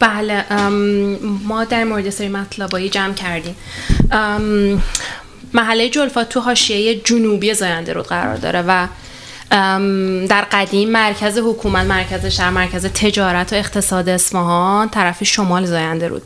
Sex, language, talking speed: female, Persian, 125 wpm